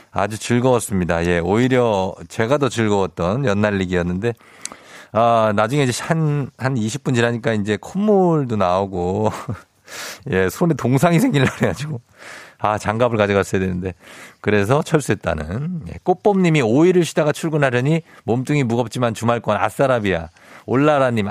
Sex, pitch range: male, 100-155 Hz